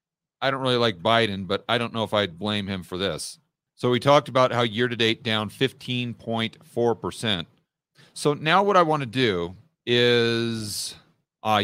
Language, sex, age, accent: English, male, 40-59, American